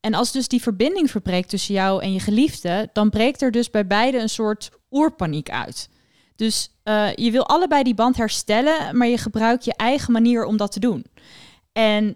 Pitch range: 210-260 Hz